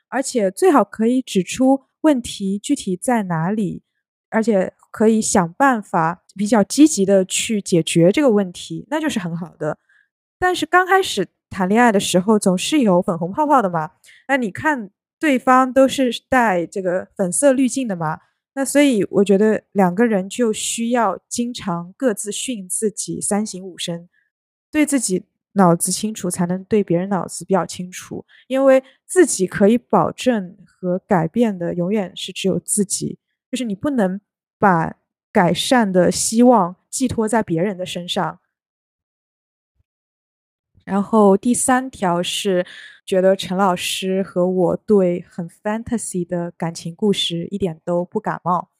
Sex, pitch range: female, 180-240 Hz